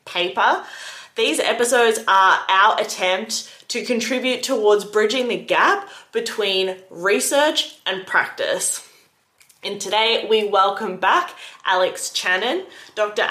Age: 20-39